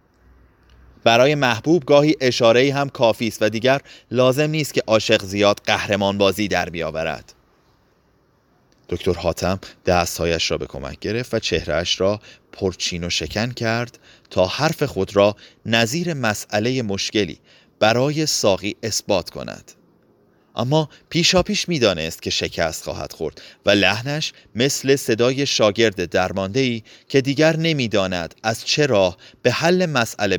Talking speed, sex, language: 130 wpm, male, Persian